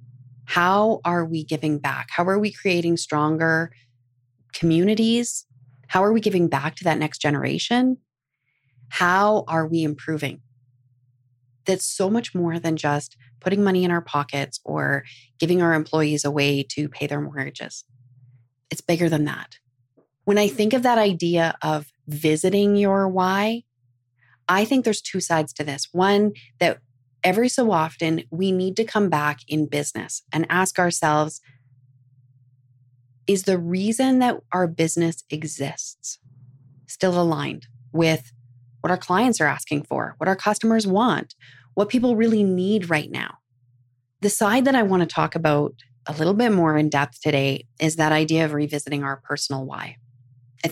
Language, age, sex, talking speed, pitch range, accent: English, 30-49, female, 155 wpm, 130-185 Hz, American